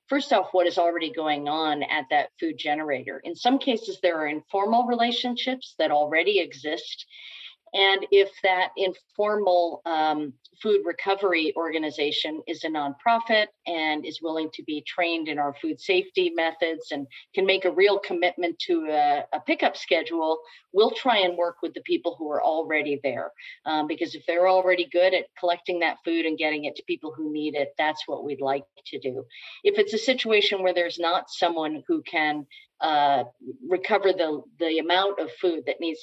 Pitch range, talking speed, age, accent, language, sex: 155-195 Hz, 180 wpm, 50-69, American, English, female